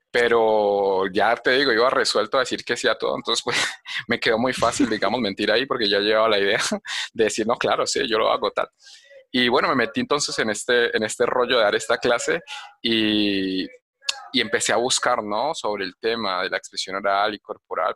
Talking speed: 215 wpm